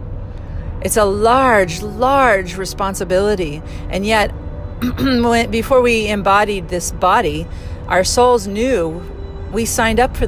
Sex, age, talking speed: female, 40-59, 110 wpm